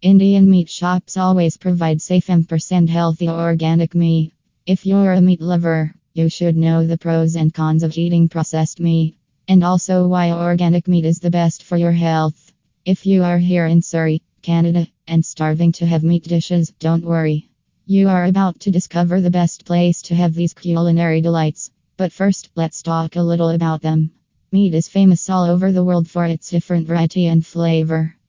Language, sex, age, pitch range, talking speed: English, female, 20-39, 165-180 Hz, 180 wpm